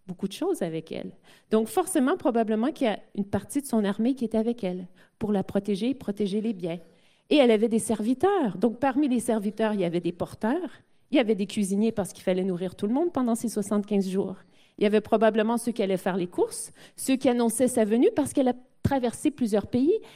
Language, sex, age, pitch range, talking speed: French, female, 40-59, 195-255 Hz, 230 wpm